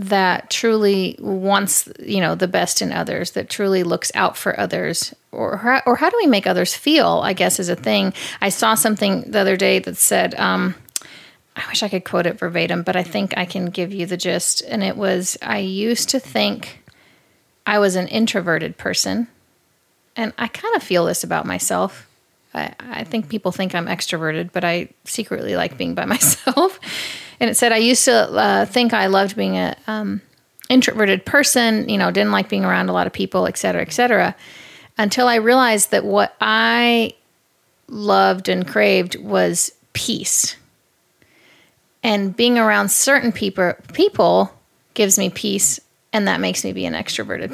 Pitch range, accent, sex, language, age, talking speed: 185-240 Hz, American, female, English, 30-49, 180 wpm